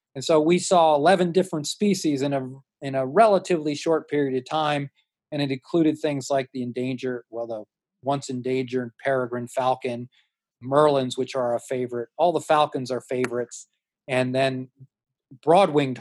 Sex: male